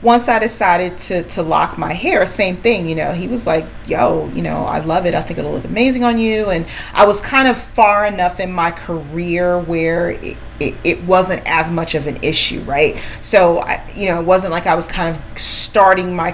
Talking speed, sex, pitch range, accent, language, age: 230 wpm, female, 160-195 Hz, American, English, 40-59